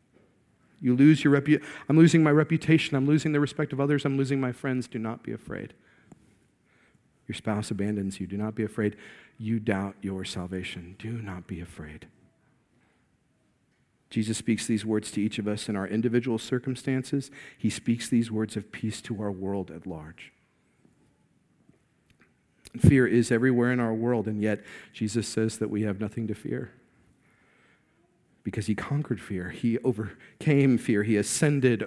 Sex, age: male, 50-69